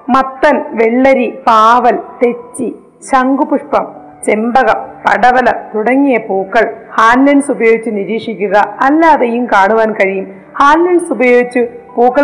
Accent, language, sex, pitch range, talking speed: native, Malayalam, female, 220-295 Hz, 90 wpm